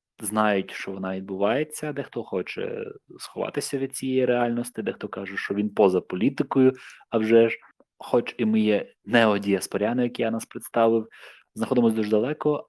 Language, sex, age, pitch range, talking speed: Ukrainian, male, 20-39, 100-120 Hz, 145 wpm